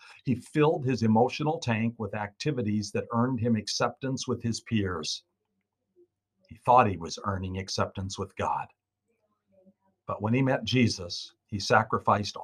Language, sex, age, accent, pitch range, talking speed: English, male, 50-69, American, 100-125 Hz, 140 wpm